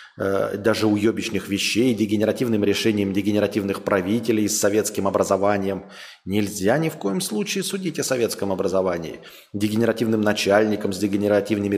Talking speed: 115 wpm